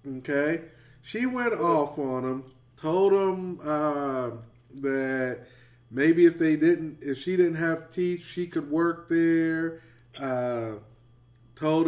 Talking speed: 120 wpm